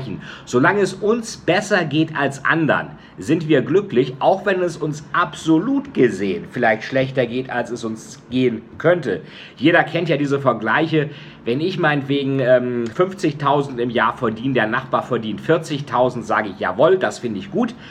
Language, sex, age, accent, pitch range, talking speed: German, male, 50-69, German, 125-170 Hz, 160 wpm